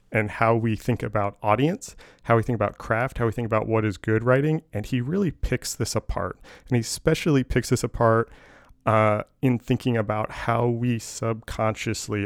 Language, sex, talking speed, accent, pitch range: English, male, 185 wpm, American, 105-120 Hz